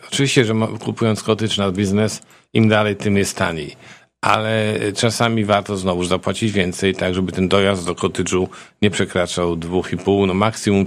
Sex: male